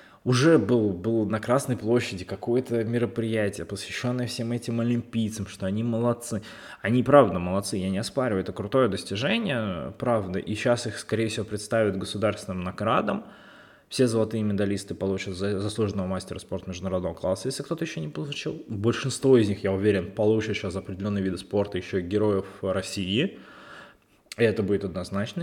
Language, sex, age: Russian, male, 20-39